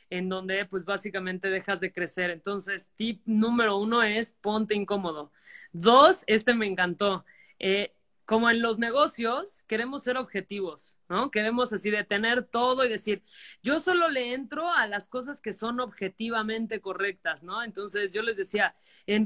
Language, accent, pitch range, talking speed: Spanish, Mexican, 195-230 Hz, 155 wpm